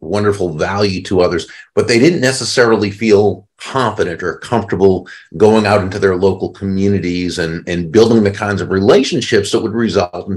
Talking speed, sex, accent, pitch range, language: 170 wpm, male, American, 90-110 Hz, English